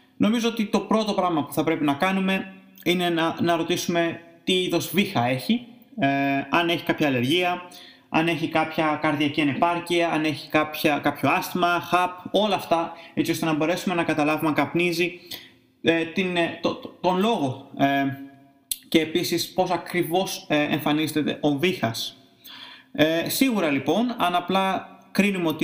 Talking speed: 150 wpm